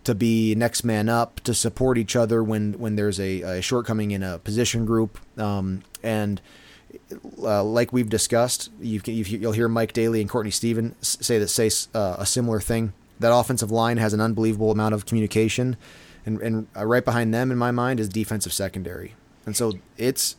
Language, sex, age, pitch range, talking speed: English, male, 30-49, 105-115 Hz, 190 wpm